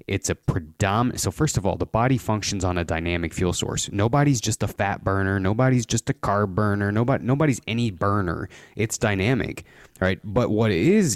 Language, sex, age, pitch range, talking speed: English, male, 30-49, 90-115 Hz, 185 wpm